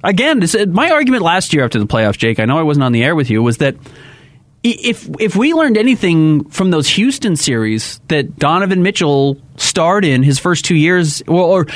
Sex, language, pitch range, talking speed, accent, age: male, English, 140-210 Hz, 210 wpm, American, 30-49